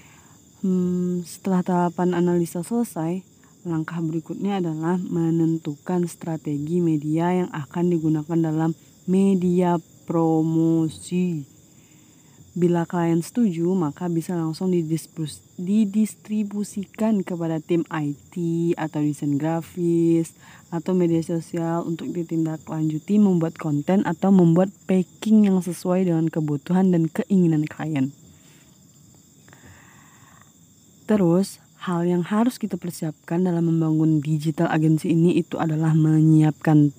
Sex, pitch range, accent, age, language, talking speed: female, 155-180 Hz, native, 30-49, Indonesian, 100 wpm